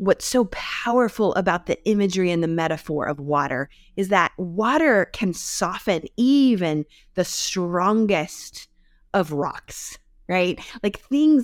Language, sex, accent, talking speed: English, female, American, 125 wpm